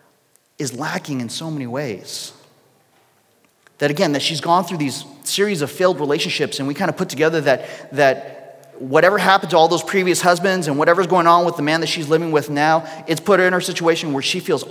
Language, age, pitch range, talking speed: English, 30-49, 150-195 Hz, 215 wpm